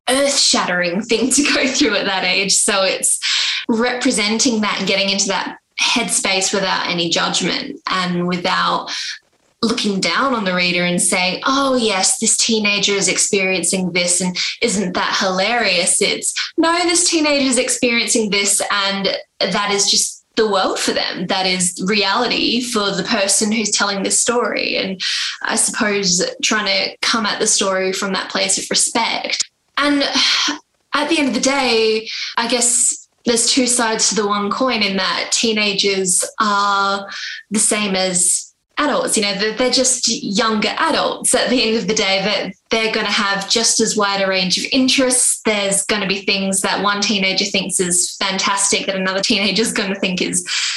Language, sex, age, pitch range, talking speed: English, female, 10-29, 195-235 Hz, 175 wpm